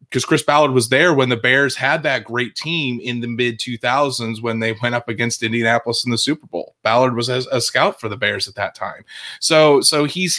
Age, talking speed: 20-39, 230 wpm